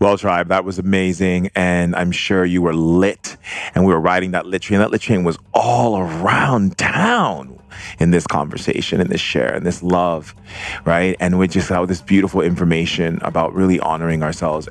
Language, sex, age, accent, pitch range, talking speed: English, male, 40-59, American, 85-100 Hz, 190 wpm